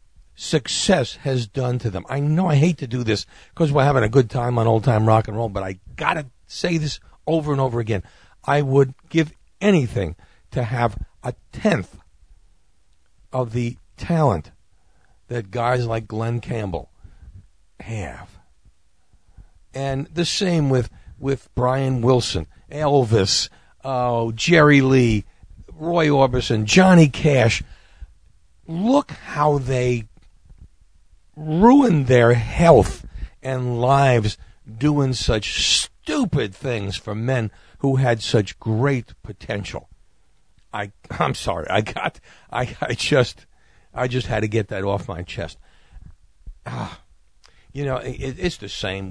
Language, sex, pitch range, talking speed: English, male, 95-135 Hz, 135 wpm